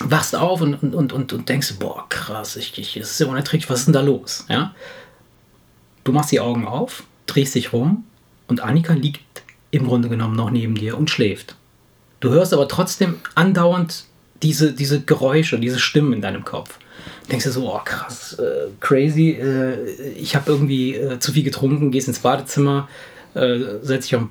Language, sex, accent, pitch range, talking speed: German, male, German, 125-155 Hz, 190 wpm